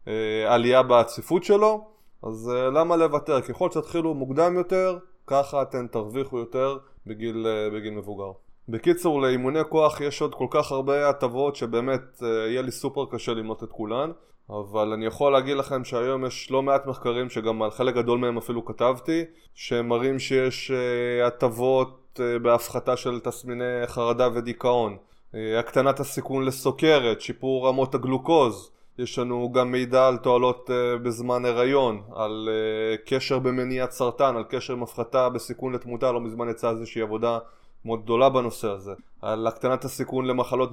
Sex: male